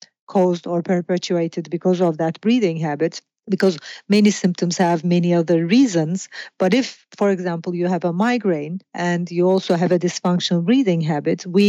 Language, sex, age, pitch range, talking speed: English, female, 40-59, 170-200 Hz, 165 wpm